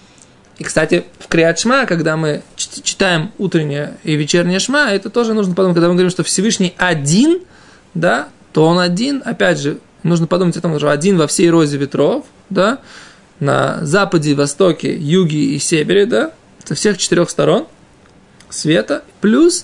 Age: 20-39